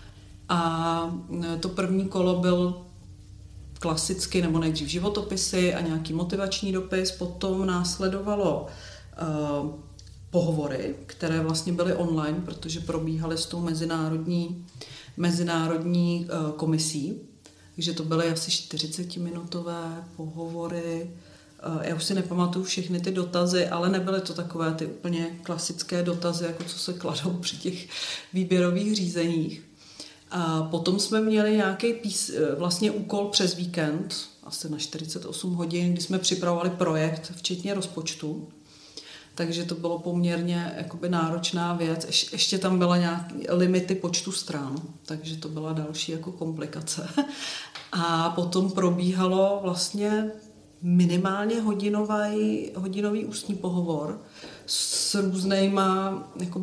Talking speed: 115 wpm